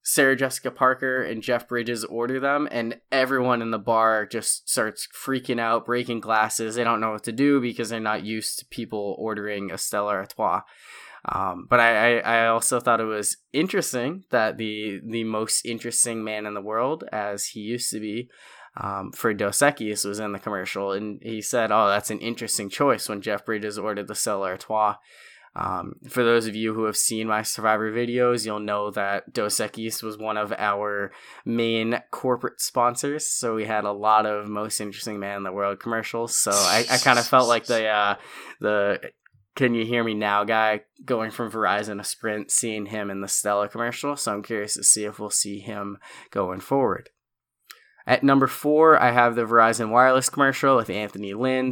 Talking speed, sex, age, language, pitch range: 195 wpm, male, 10-29, English, 105-120 Hz